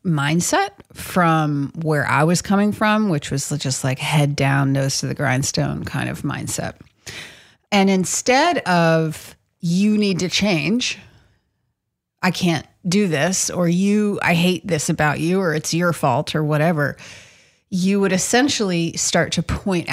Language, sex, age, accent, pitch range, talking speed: English, female, 30-49, American, 155-210 Hz, 150 wpm